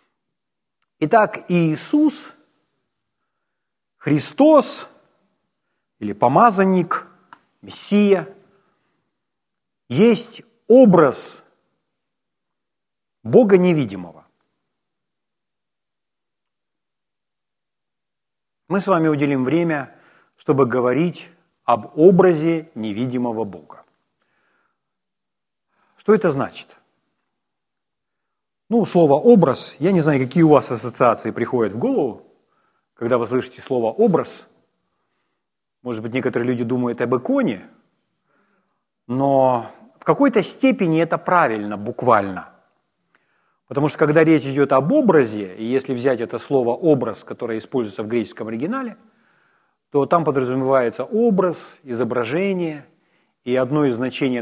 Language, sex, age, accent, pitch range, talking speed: Ukrainian, male, 50-69, native, 125-190 Hz, 90 wpm